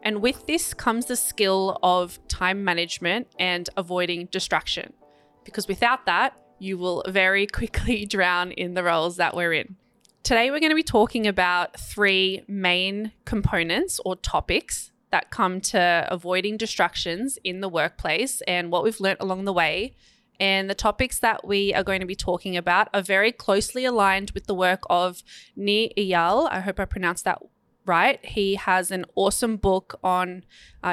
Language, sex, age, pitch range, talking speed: English, female, 20-39, 180-220 Hz, 170 wpm